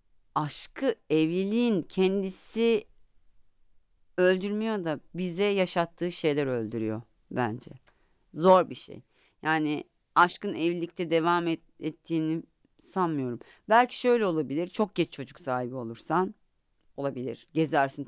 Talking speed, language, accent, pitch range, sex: 100 wpm, Turkish, native, 160-245 Hz, female